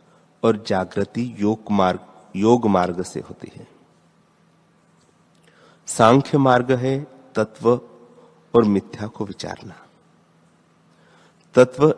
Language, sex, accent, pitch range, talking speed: Hindi, male, native, 100-125 Hz, 90 wpm